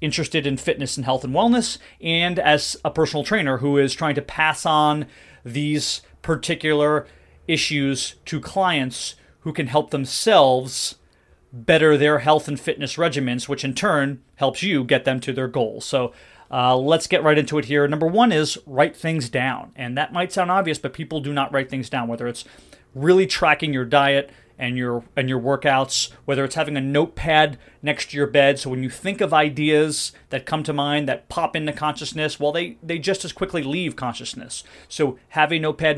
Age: 30-49